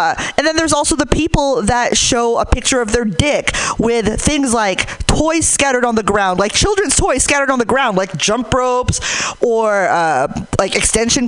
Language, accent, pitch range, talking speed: English, American, 185-245 Hz, 190 wpm